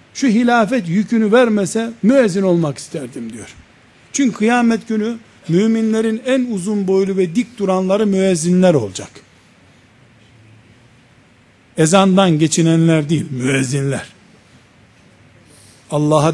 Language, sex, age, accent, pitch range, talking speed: Turkish, male, 60-79, native, 180-235 Hz, 90 wpm